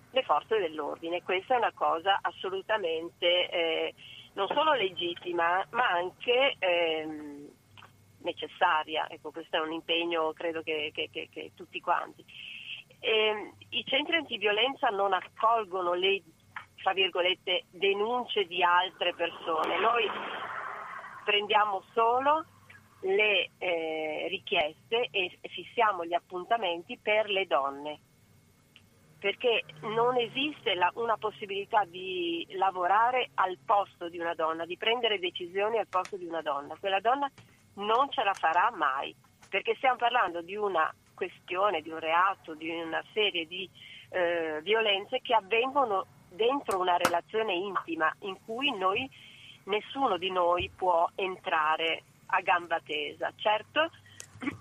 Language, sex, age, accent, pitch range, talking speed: Italian, female, 40-59, native, 170-230 Hz, 125 wpm